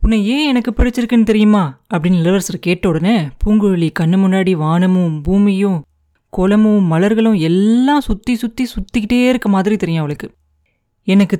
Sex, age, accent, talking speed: female, 30-49, native, 130 wpm